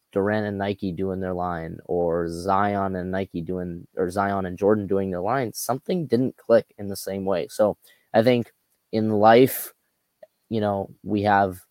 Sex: male